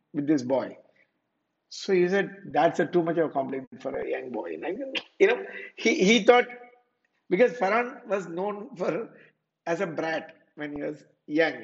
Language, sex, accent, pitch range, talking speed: English, male, Indian, 150-200 Hz, 185 wpm